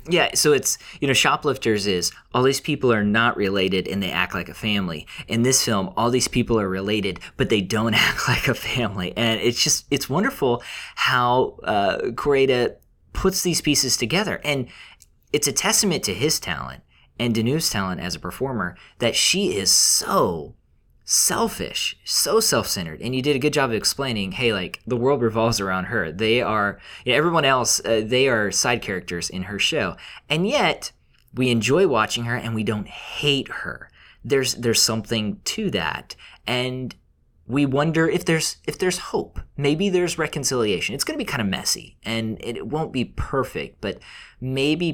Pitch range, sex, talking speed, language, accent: 105-145 Hz, male, 180 wpm, English, American